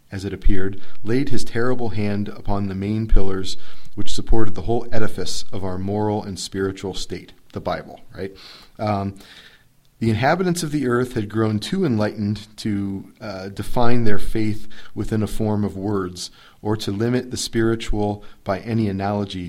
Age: 40-59